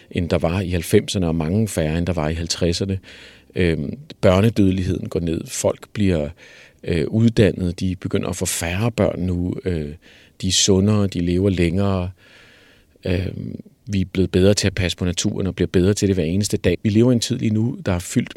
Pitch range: 90-110 Hz